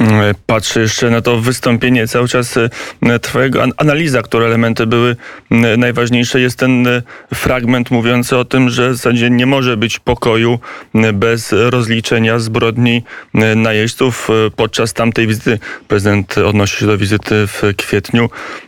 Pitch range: 110-120 Hz